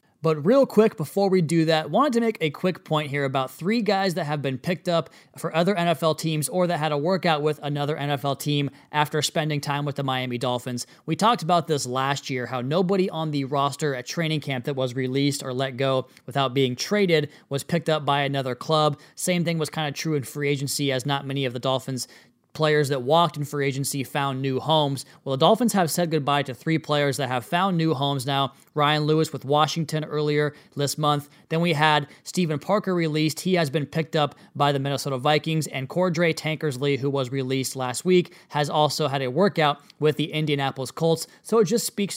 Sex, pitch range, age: male, 140-165 Hz, 20-39